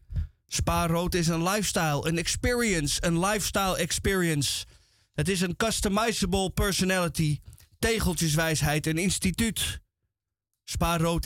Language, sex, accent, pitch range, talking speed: Dutch, male, Dutch, 145-200 Hz, 95 wpm